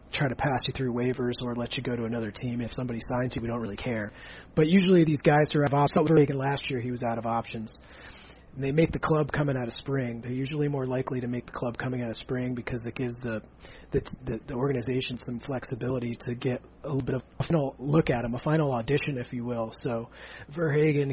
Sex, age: male, 30-49